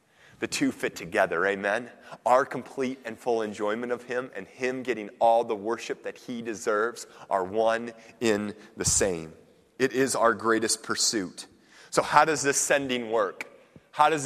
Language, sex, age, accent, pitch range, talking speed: English, male, 30-49, American, 130-155 Hz, 165 wpm